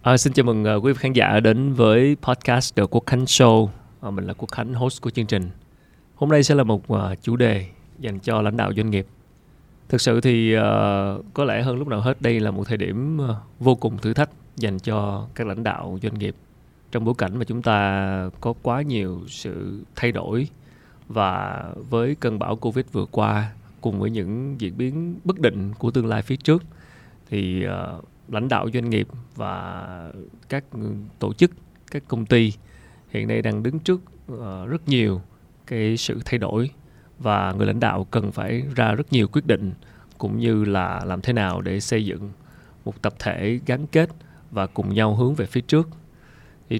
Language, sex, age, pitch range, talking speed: Vietnamese, male, 20-39, 100-125 Hz, 195 wpm